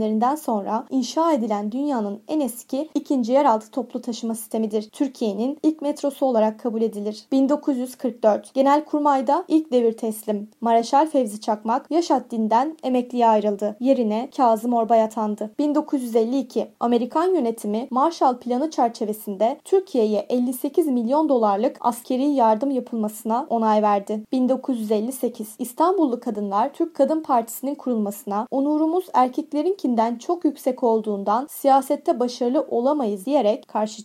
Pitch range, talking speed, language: 220-280 Hz, 115 wpm, Turkish